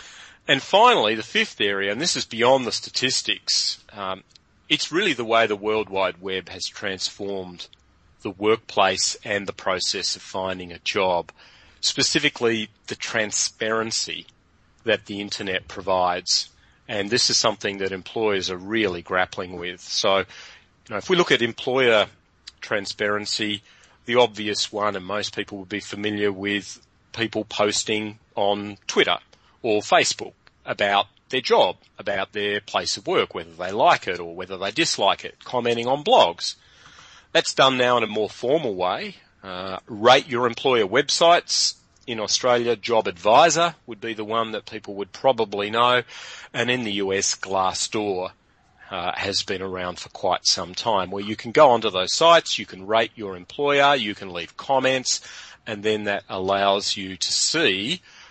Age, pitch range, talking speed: 40-59, 95-115 Hz, 160 wpm